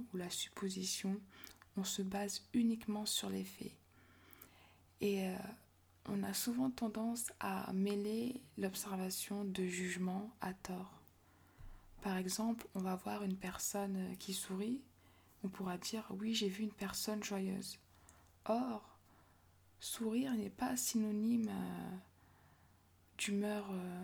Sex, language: female, French